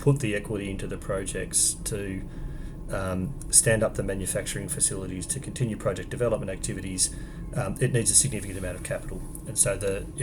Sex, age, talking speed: male, 30-49, 175 wpm